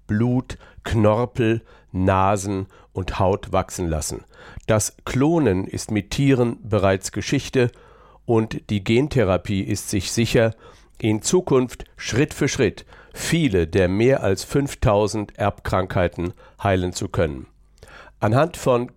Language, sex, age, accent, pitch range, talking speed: German, male, 60-79, German, 100-125 Hz, 115 wpm